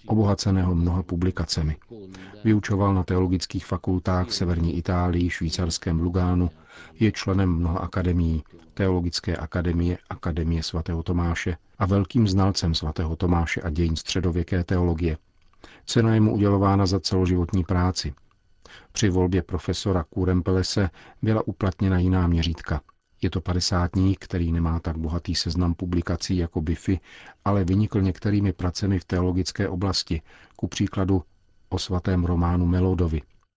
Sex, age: male, 40-59